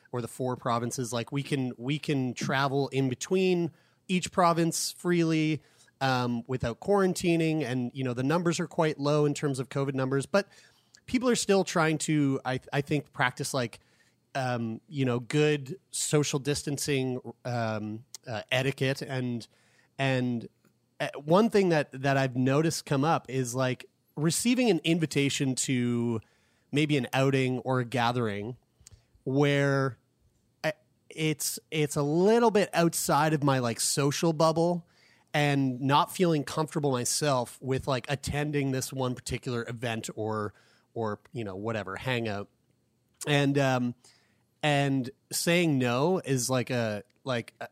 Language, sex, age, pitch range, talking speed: English, male, 30-49, 120-155 Hz, 140 wpm